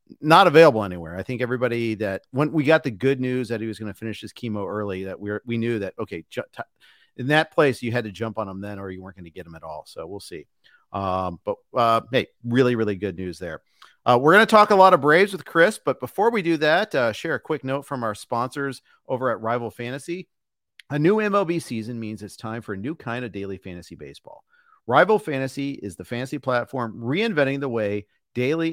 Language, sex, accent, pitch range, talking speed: English, male, American, 105-150 Hz, 235 wpm